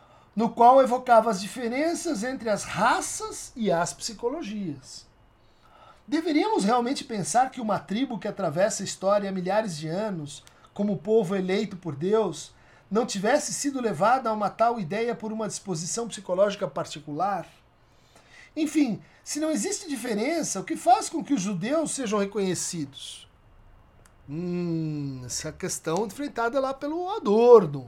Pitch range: 175-285 Hz